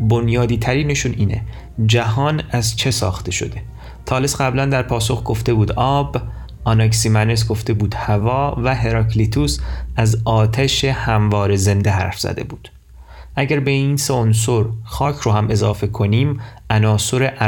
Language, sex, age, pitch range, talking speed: Persian, male, 30-49, 105-130 Hz, 135 wpm